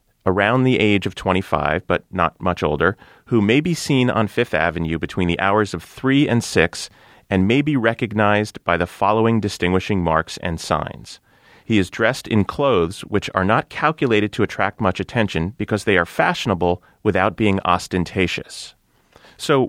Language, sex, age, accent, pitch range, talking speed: English, male, 30-49, American, 90-115 Hz, 170 wpm